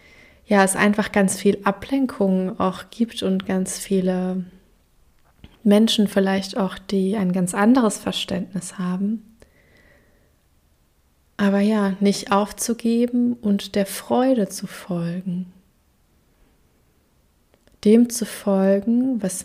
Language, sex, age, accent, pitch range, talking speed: German, female, 20-39, German, 185-205 Hz, 100 wpm